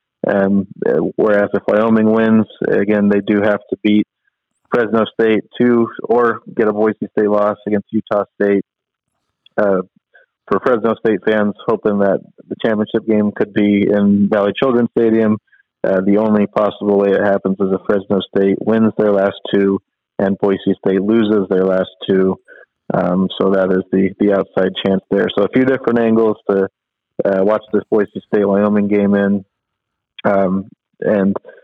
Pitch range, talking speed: 100-110 Hz, 165 wpm